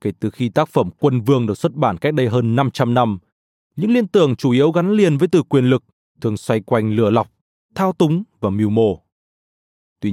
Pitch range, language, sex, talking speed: 110-180 Hz, Vietnamese, male, 220 wpm